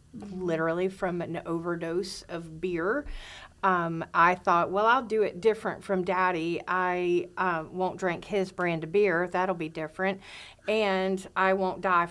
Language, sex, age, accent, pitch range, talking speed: English, female, 40-59, American, 170-195 Hz, 155 wpm